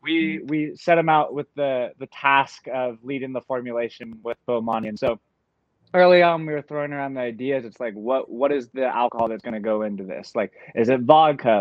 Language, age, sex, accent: English, 20-39, male, American